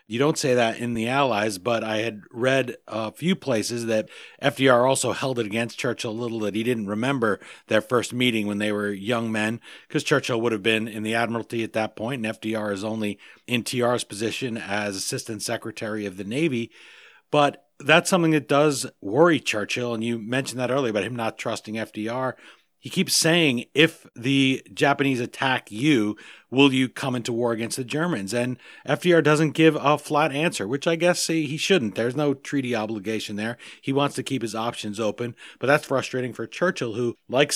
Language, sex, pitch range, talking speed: English, male, 110-135 Hz, 195 wpm